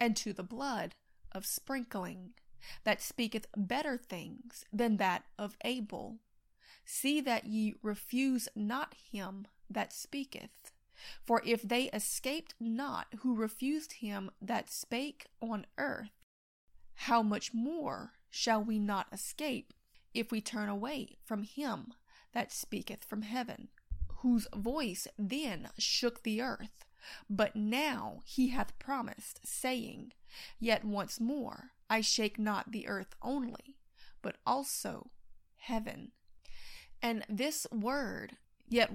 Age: 30-49